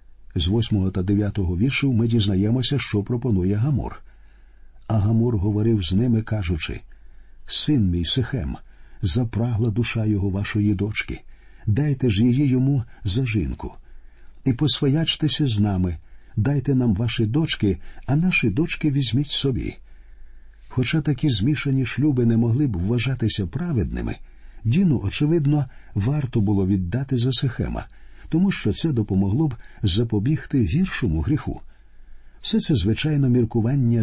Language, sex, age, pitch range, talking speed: Ukrainian, male, 50-69, 100-130 Hz, 125 wpm